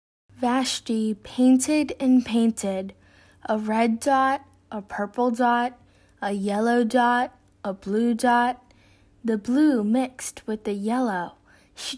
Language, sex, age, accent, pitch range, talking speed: English, female, 10-29, American, 210-260 Hz, 115 wpm